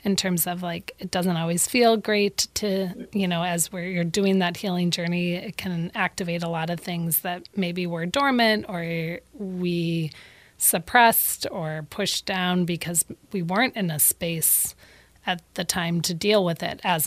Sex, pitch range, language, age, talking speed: female, 170-210 Hz, English, 30-49, 175 wpm